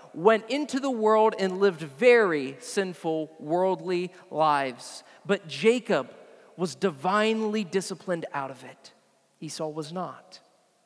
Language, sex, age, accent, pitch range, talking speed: English, male, 40-59, American, 180-255 Hz, 115 wpm